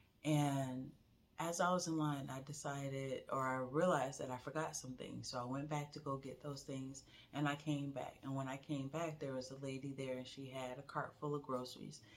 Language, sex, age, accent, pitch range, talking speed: English, female, 30-49, American, 125-155 Hz, 225 wpm